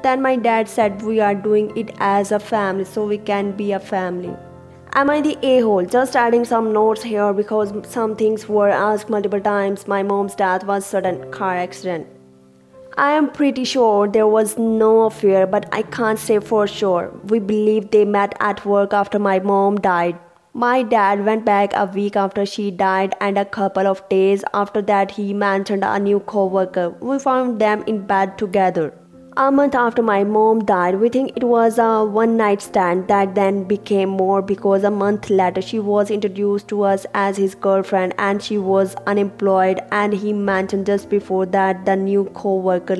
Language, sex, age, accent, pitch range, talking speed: English, female, 20-39, Indian, 195-220 Hz, 185 wpm